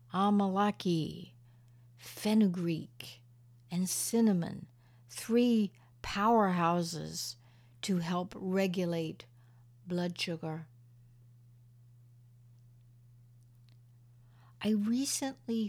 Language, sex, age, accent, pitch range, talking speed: English, female, 60-79, American, 120-190 Hz, 50 wpm